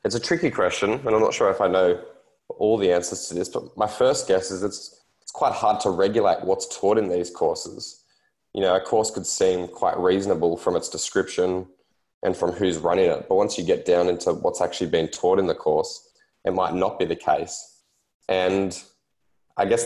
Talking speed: 210 wpm